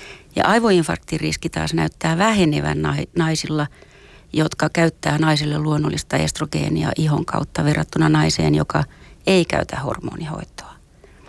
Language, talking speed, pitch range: Finnish, 100 wpm, 150-180 Hz